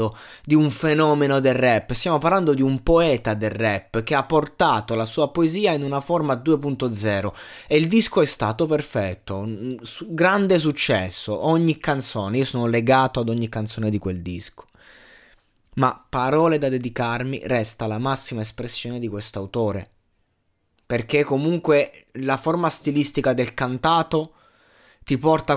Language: Italian